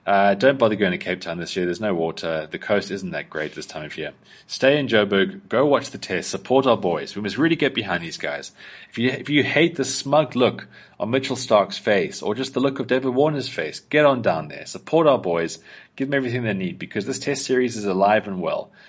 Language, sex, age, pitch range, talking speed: English, male, 30-49, 95-130 Hz, 250 wpm